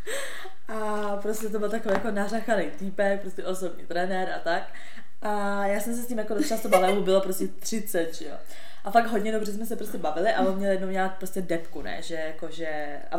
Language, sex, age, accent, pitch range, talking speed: Czech, female, 20-39, native, 165-205 Hz, 210 wpm